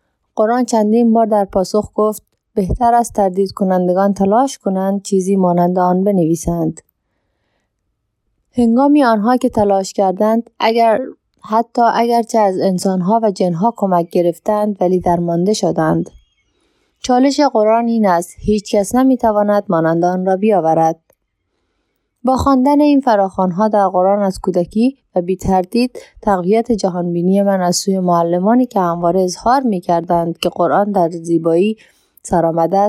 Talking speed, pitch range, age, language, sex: 130 wpm, 180-225 Hz, 20-39, Persian, female